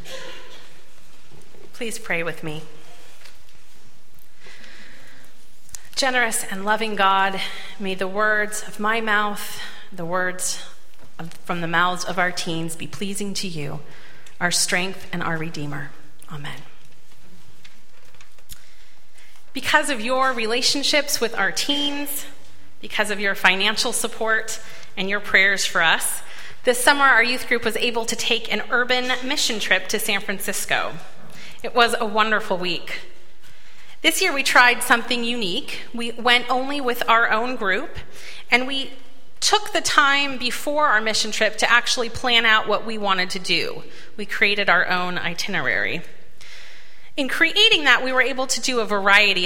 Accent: American